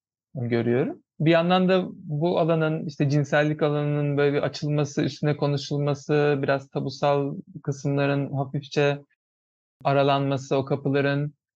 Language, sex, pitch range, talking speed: Turkish, male, 130-160 Hz, 105 wpm